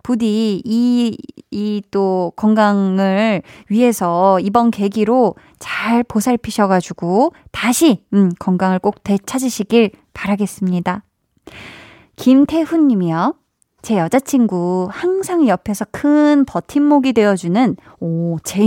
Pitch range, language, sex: 195-280 Hz, Korean, female